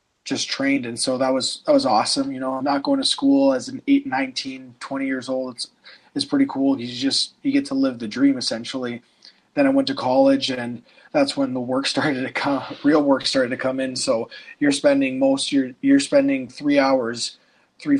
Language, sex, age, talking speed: English, male, 20-39, 215 wpm